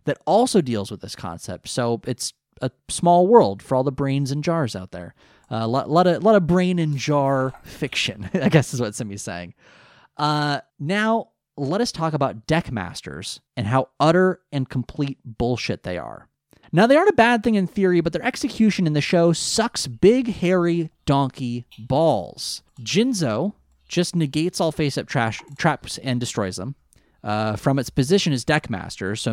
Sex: male